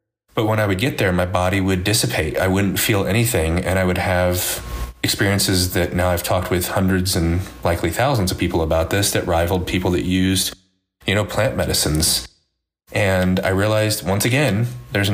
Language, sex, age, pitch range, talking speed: English, male, 30-49, 90-105 Hz, 185 wpm